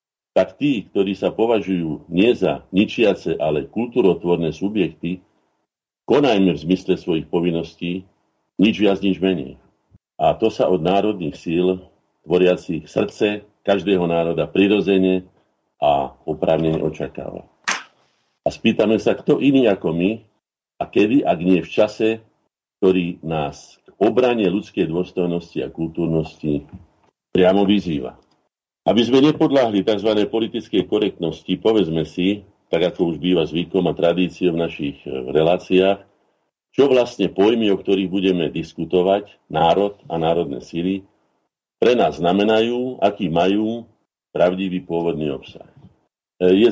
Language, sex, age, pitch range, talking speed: Slovak, male, 50-69, 85-100 Hz, 120 wpm